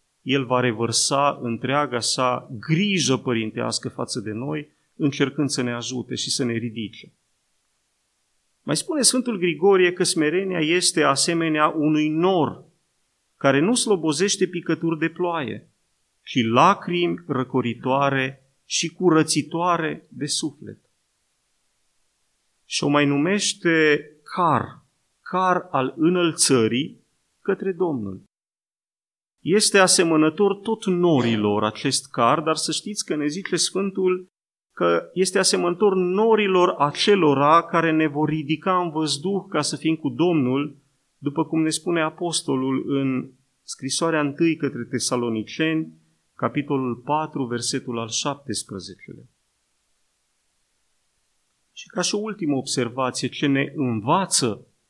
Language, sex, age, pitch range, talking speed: Romanian, male, 30-49, 130-175 Hz, 115 wpm